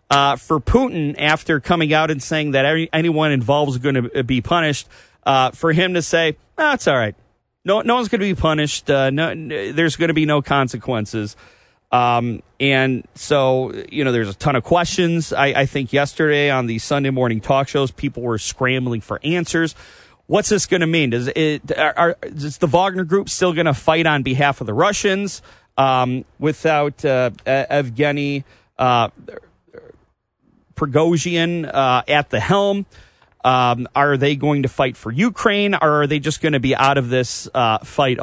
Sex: male